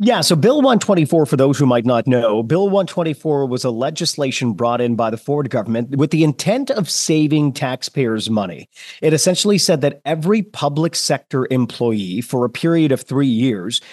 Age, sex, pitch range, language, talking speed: 40-59, male, 120-160 Hz, English, 180 wpm